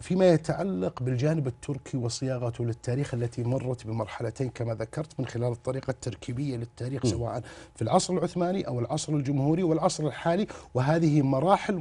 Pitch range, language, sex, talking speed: 130-185 Hz, Arabic, male, 135 wpm